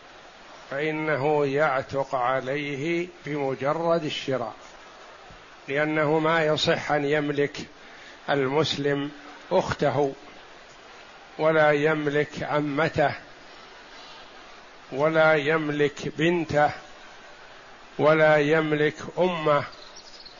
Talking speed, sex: 60 wpm, male